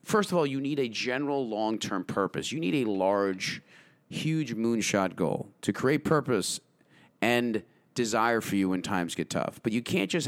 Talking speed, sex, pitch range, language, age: 180 wpm, male, 100-135 Hz, English, 30-49